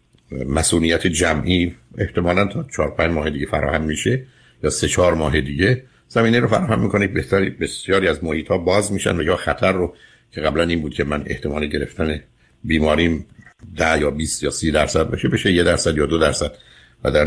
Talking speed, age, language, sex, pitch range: 185 wpm, 60-79, Persian, male, 75-95 Hz